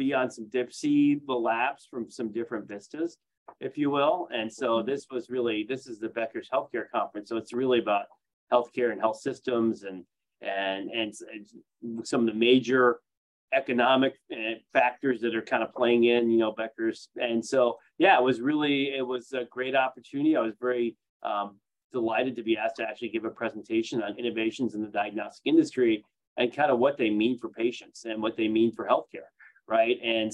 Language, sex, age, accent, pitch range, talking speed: English, male, 30-49, American, 110-135 Hz, 190 wpm